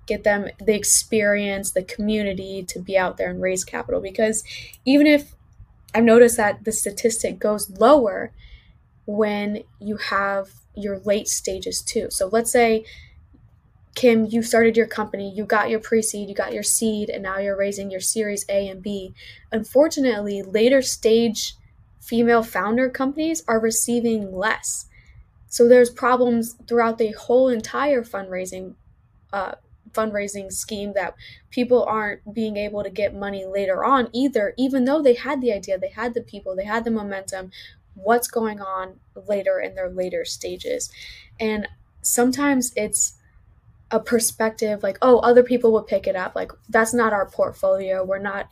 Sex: female